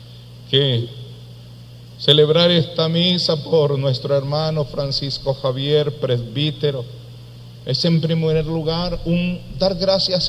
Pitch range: 120-160 Hz